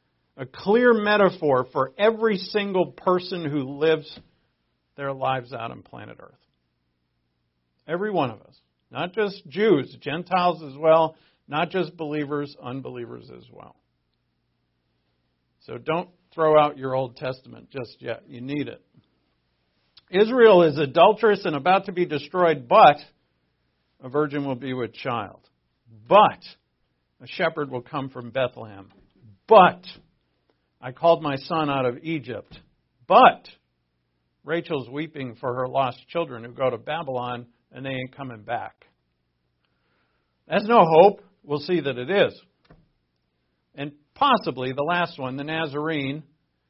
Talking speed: 135 wpm